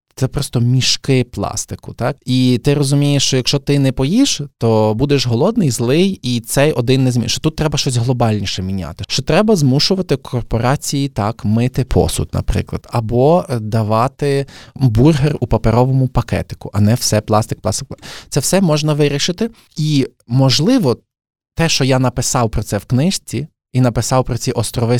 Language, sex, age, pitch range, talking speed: Ukrainian, male, 20-39, 110-135 Hz, 160 wpm